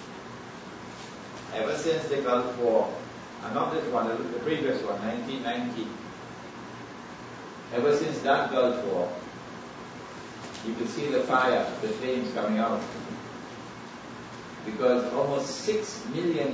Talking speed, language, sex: 115 wpm, English, male